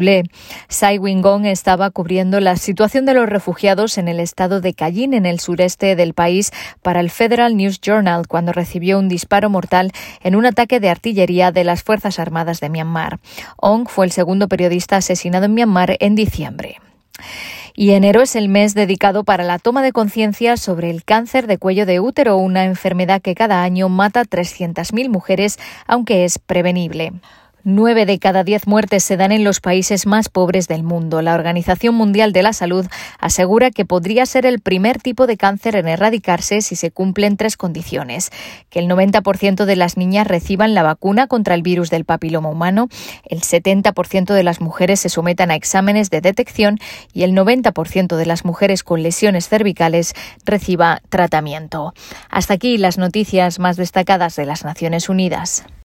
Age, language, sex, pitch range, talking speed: 20-39, Spanish, female, 175-210 Hz, 175 wpm